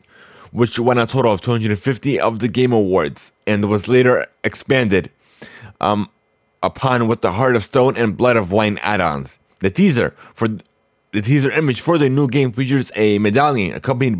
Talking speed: 175 wpm